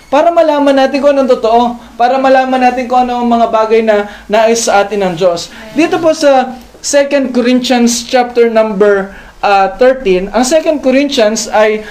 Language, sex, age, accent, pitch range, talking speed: Filipino, male, 20-39, native, 230-280 Hz, 155 wpm